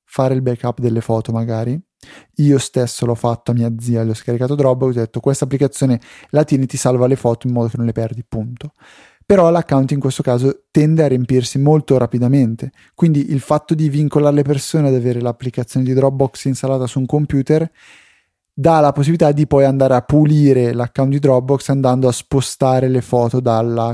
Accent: native